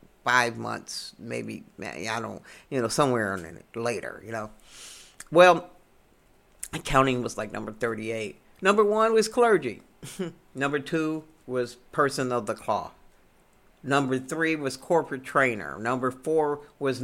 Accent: American